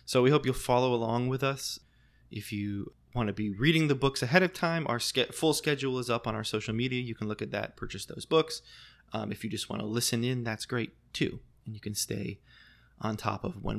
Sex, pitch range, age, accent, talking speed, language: male, 110-135 Hz, 20-39, American, 240 wpm, English